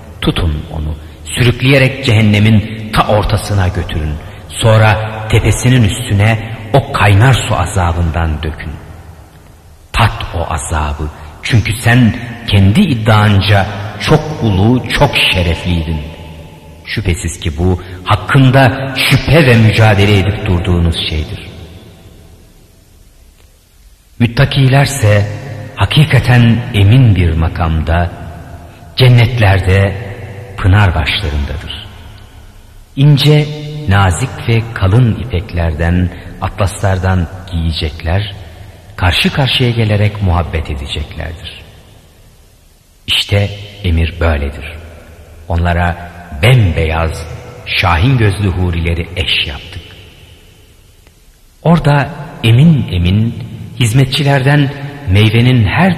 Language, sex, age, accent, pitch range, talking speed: Turkish, male, 50-69, native, 85-115 Hz, 75 wpm